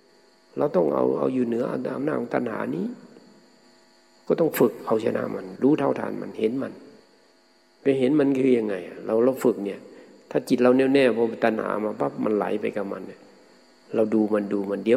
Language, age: Thai, 60-79